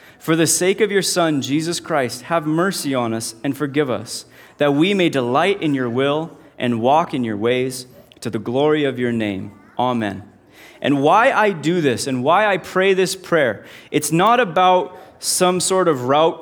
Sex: male